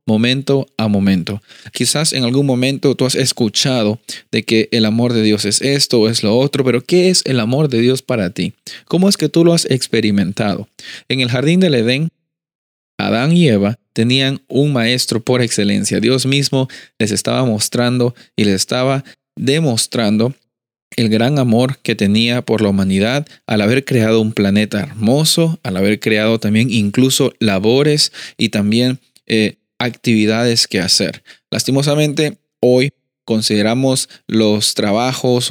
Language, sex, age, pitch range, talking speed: Spanish, male, 30-49, 110-135 Hz, 155 wpm